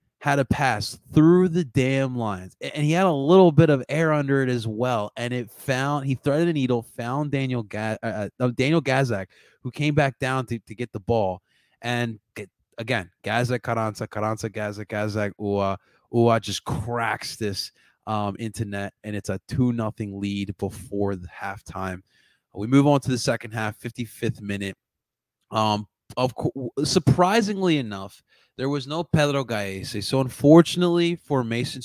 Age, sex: 20-39, male